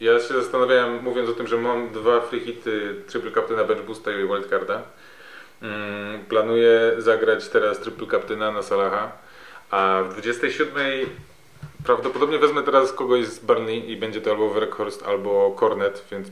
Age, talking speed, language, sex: 30-49, 150 wpm, Polish, male